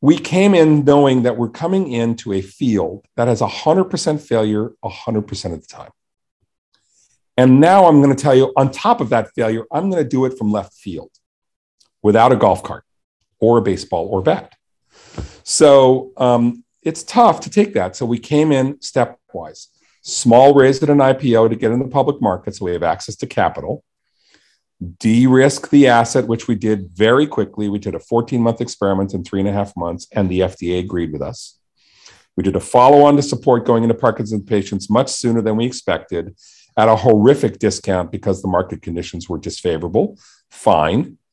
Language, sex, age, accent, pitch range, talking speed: English, male, 50-69, American, 100-135 Hz, 180 wpm